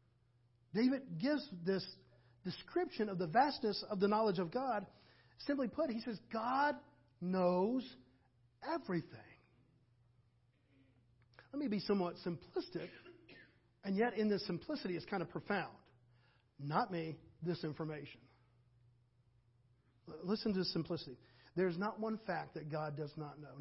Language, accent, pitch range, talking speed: English, American, 125-190 Hz, 125 wpm